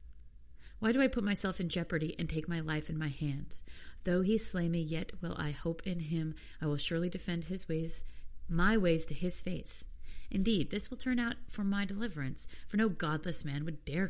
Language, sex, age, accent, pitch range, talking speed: English, female, 40-59, American, 150-180 Hz, 210 wpm